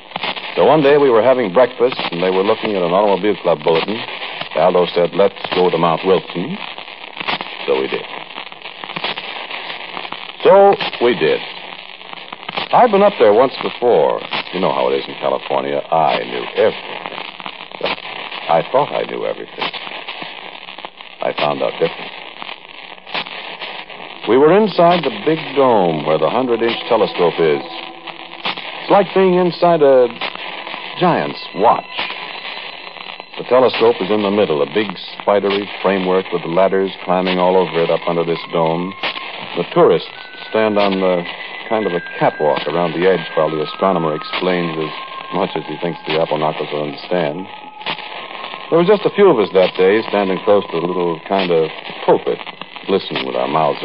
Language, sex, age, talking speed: English, male, 60-79, 155 wpm